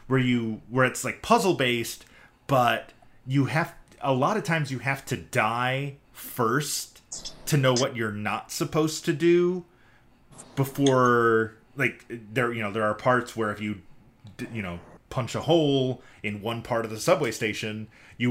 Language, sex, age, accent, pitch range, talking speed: English, male, 30-49, American, 100-130 Hz, 165 wpm